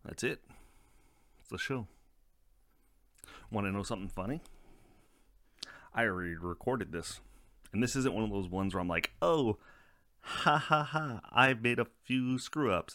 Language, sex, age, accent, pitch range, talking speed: English, male, 30-49, American, 90-110 Hz, 155 wpm